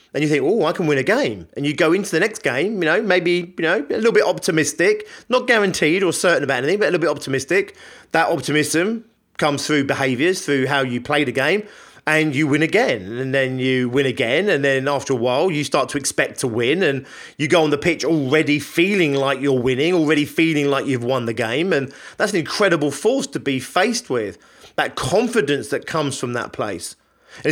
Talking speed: 220 wpm